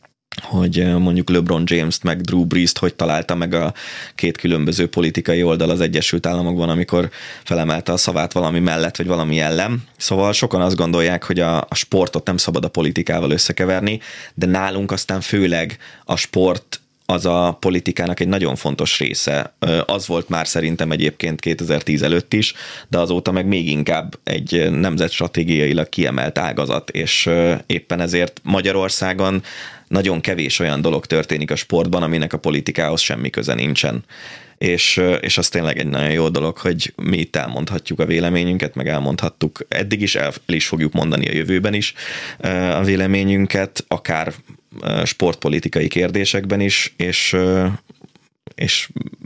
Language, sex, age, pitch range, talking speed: Hungarian, male, 20-39, 80-95 Hz, 145 wpm